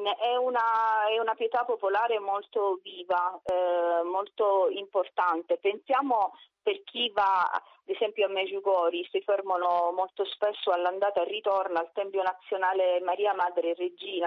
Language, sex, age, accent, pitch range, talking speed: Italian, female, 30-49, native, 180-220 Hz, 130 wpm